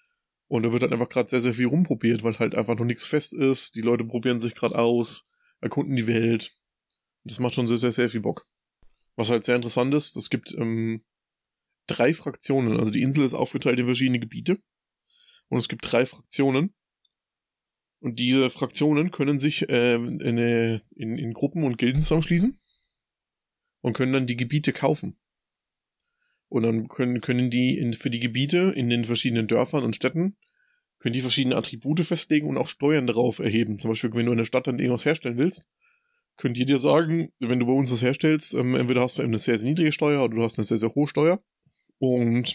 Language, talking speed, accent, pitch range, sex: German, 195 wpm, German, 120-150 Hz, male